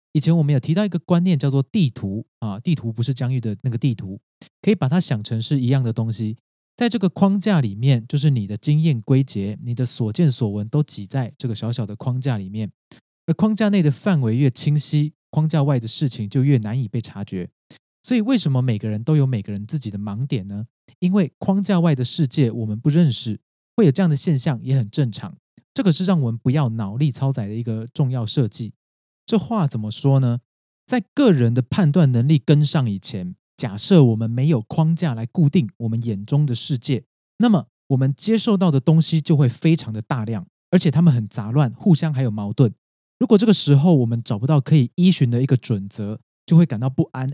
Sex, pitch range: male, 115-165 Hz